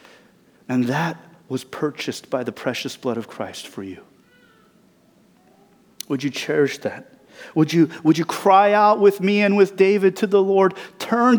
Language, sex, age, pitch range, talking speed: English, male, 30-49, 125-205 Hz, 165 wpm